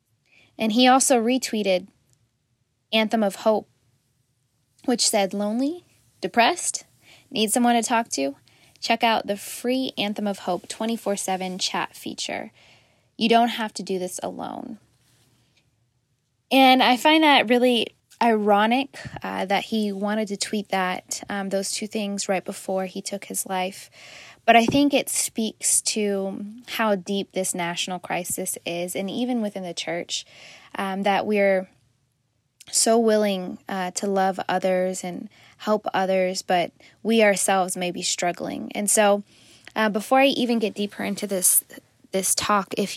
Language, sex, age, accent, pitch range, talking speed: English, female, 10-29, American, 180-225 Hz, 145 wpm